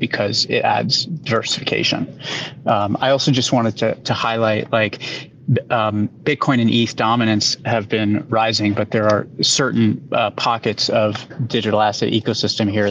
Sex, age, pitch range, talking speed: male, 30-49, 110-125 Hz, 150 wpm